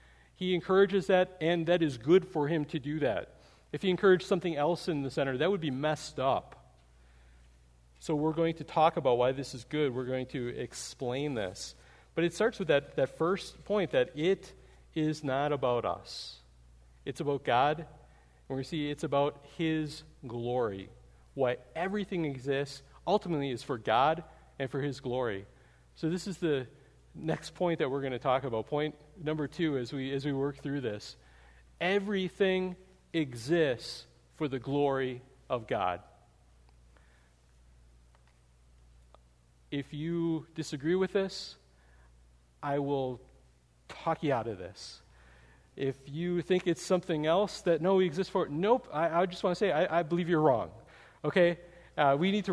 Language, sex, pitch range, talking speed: English, male, 120-170 Hz, 165 wpm